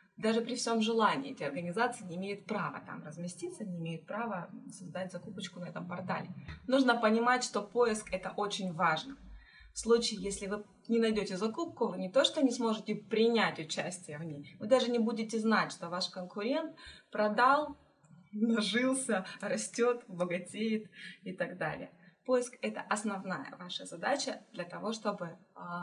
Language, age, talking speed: Russian, 20-39, 155 wpm